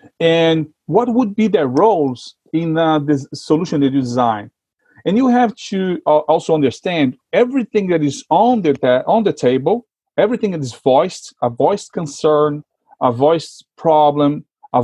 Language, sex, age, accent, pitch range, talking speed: English, male, 40-59, Brazilian, 140-190 Hz, 160 wpm